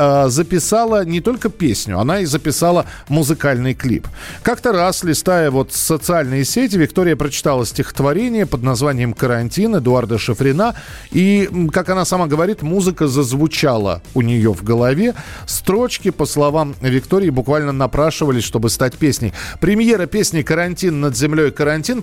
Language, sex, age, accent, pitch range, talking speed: Russian, male, 40-59, native, 130-175 Hz, 135 wpm